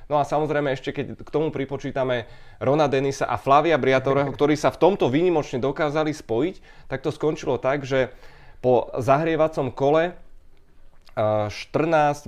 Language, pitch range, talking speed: Czech, 110-145 Hz, 140 wpm